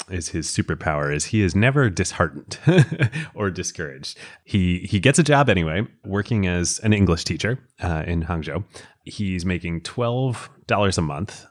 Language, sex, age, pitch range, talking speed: English, male, 30-49, 85-115 Hz, 155 wpm